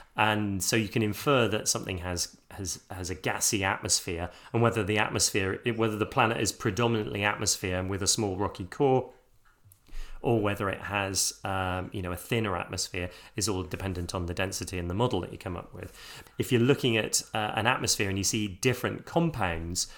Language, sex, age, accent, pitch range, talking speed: English, male, 30-49, British, 95-115 Hz, 195 wpm